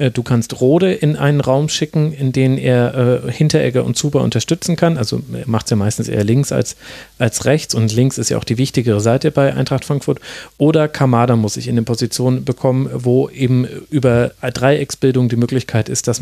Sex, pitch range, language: male, 120-150 Hz, German